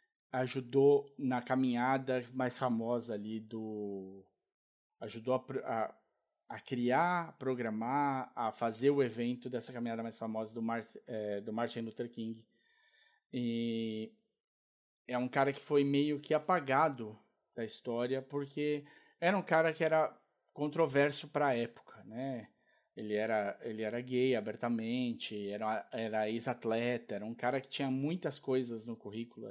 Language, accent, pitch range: Portuguese, Brazilian, 115-140 Hz